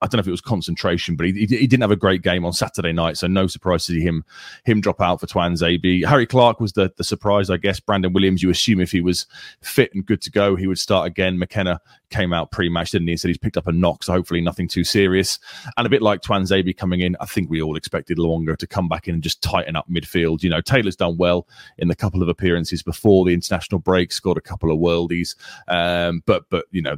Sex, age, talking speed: male, 30-49, 265 wpm